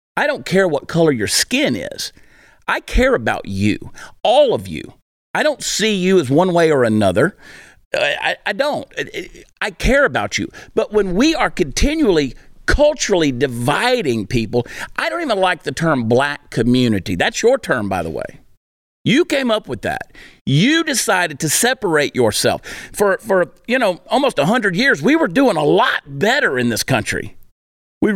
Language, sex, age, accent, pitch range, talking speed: English, male, 50-69, American, 145-240 Hz, 175 wpm